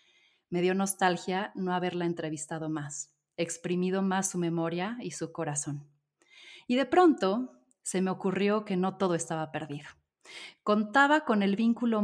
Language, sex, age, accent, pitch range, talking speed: Spanish, female, 30-49, Mexican, 165-225 Hz, 150 wpm